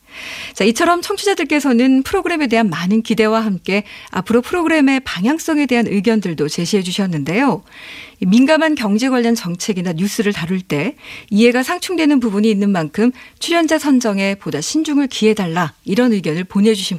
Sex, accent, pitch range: female, native, 195-260 Hz